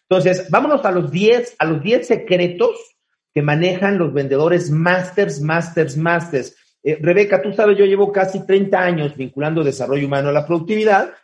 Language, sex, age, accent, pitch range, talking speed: Spanish, male, 40-59, Mexican, 150-200 Hz, 150 wpm